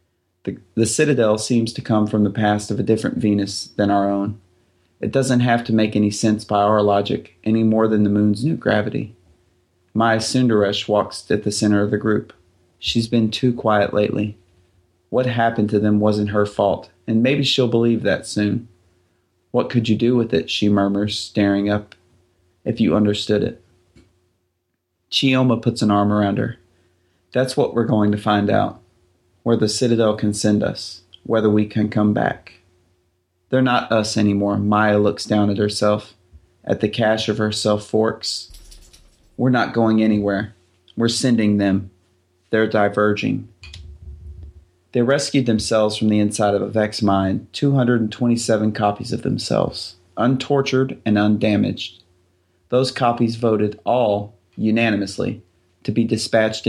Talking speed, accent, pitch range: 155 wpm, American, 90-115 Hz